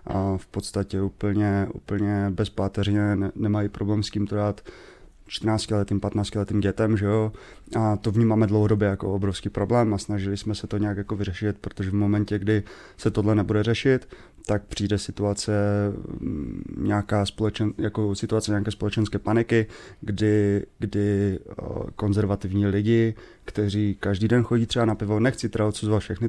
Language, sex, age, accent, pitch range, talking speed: Czech, male, 20-39, native, 100-110 Hz, 155 wpm